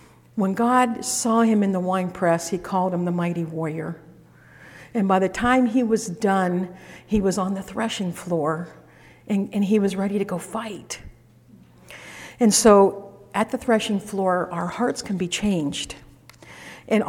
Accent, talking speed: American, 165 wpm